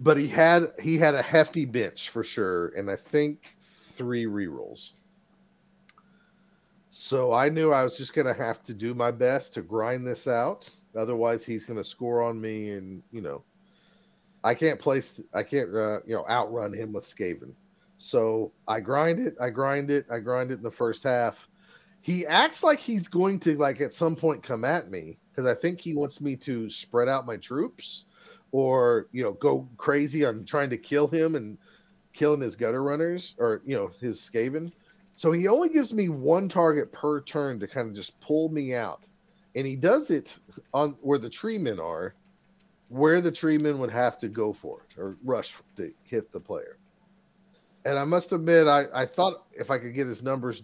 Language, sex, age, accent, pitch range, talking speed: English, male, 40-59, American, 120-180 Hz, 195 wpm